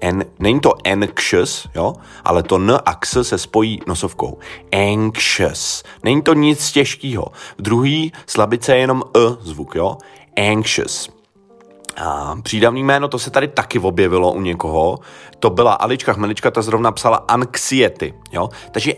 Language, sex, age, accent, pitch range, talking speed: Czech, male, 30-49, native, 90-135 Hz, 140 wpm